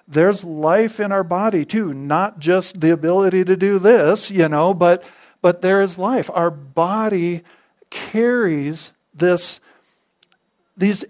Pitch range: 155-195 Hz